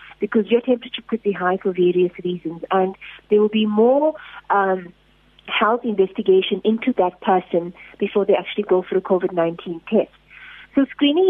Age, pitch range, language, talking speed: 30-49, 185-230 Hz, English, 160 wpm